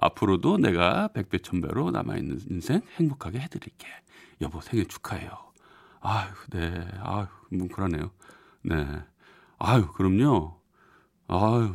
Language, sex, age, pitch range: Korean, male, 40-59, 95-140 Hz